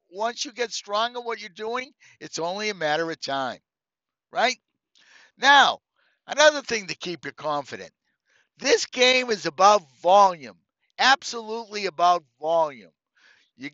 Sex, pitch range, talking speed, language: male, 180-255 Hz, 130 wpm, English